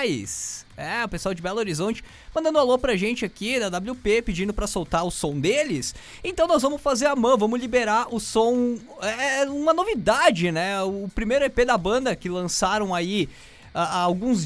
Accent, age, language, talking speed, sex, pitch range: Brazilian, 20-39, English, 180 wpm, male, 185-255 Hz